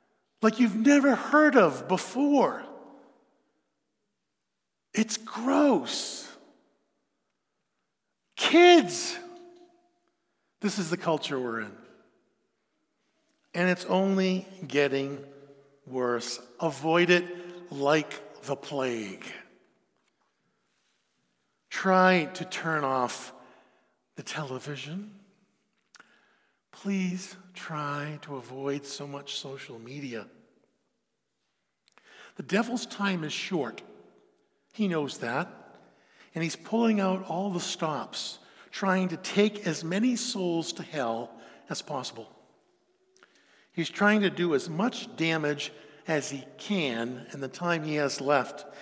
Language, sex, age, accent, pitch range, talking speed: English, male, 50-69, American, 145-205 Hz, 100 wpm